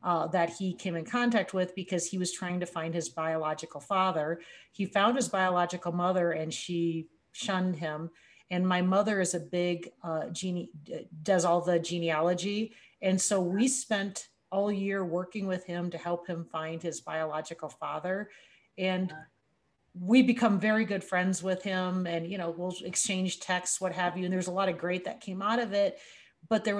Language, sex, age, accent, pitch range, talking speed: English, female, 40-59, American, 180-215 Hz, 185 wpm